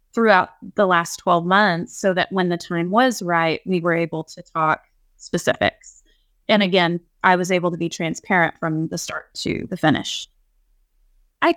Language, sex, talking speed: English, female, 170 wpm